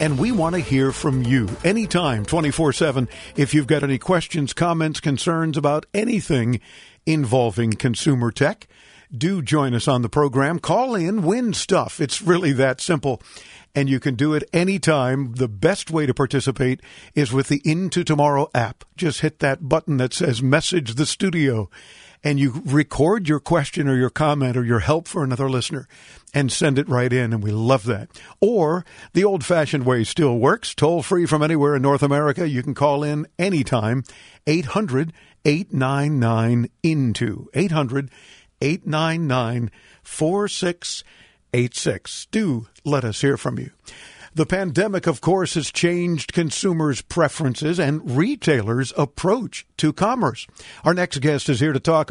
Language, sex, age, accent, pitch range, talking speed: English, male, 50-69, American, 135-165 Hz, 150 wpm